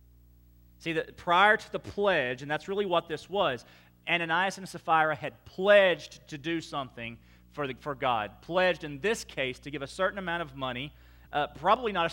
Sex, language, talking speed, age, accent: male, English, 195 wpm, 40-59, American